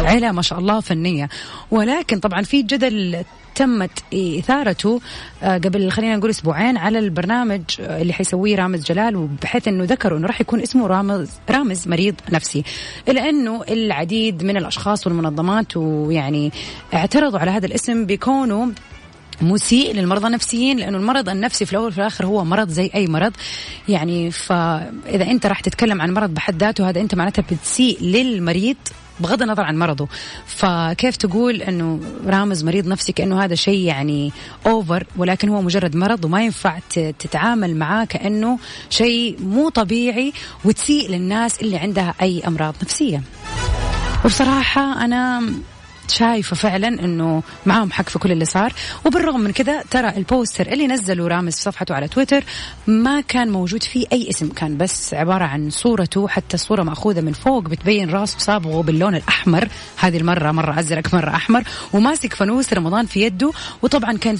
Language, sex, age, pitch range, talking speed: English, female, 30-49, 170-230 Hz, 150 wpm